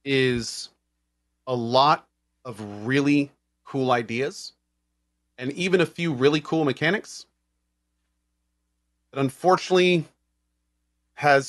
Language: English